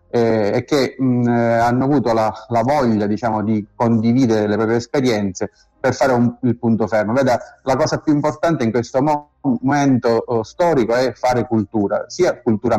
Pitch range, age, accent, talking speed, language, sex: 105-120 Hz, 30-49, native, 165 wpm, Italian, male